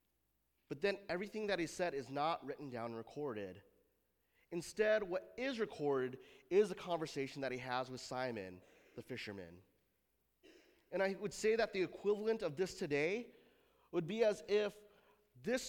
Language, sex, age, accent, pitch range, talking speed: English, male, 30-49, American, 125-195 Hz, 155 wpm